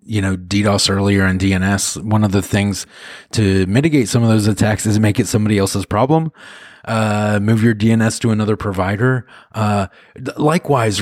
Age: 30-49